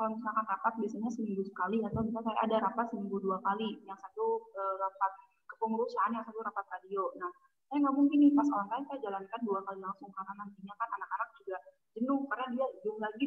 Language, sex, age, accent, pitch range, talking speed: Indonesian, female, 20-39, native, 195-255 Hz, 205 wpm